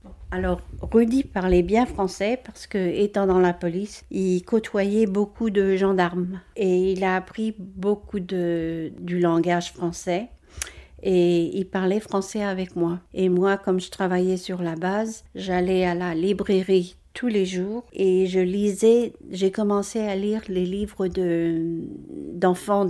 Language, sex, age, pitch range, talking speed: French, female, 60-79, 180-200 Hz, 150 wpm